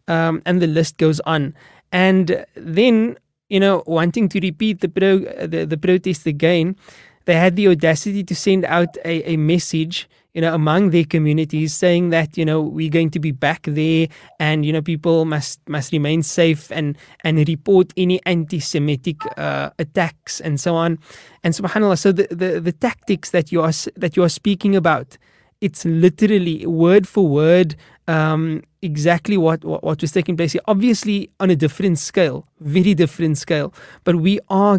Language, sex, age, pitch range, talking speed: English, male, 20-39, 160-185 Hz, 175 wpm